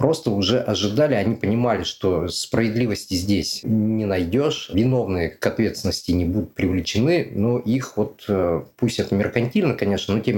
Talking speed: 145 wpm